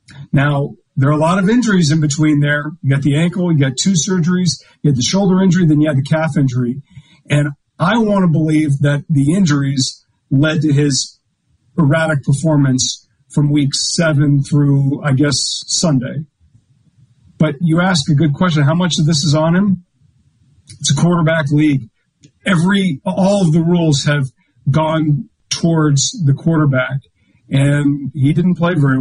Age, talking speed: 40-59, 170 wpm